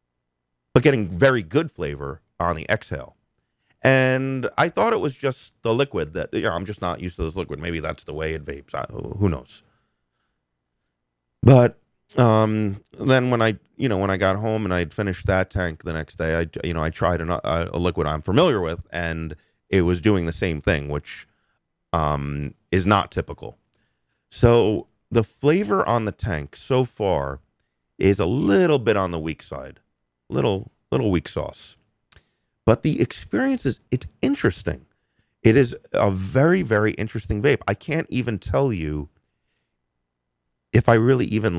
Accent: American